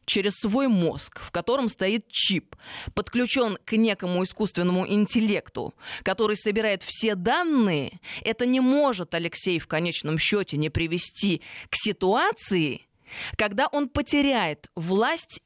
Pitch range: 180-225 Hz